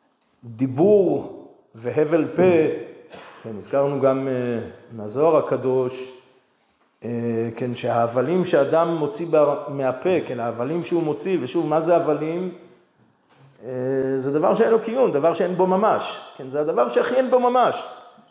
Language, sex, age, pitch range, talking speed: Hebrew, male, 40-59, 130-185 Hz, 130 wpm